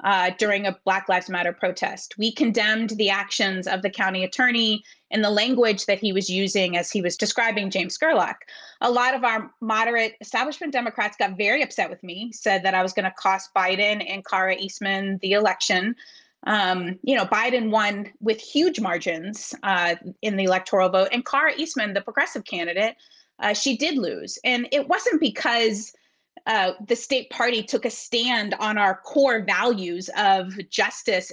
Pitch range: 195-250 Hz